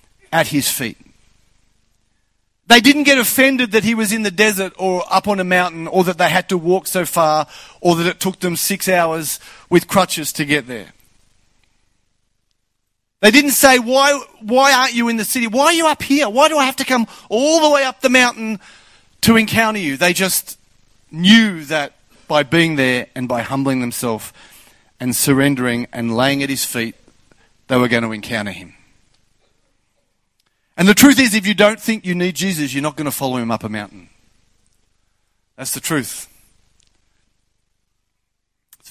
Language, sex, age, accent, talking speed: English, male, 40-59, Australian, 180 wpm